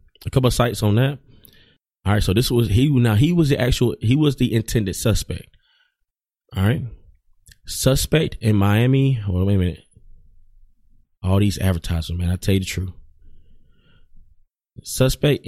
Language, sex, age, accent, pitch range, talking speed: English, male, 20-39, American, 90-125 Hz, 155 wpm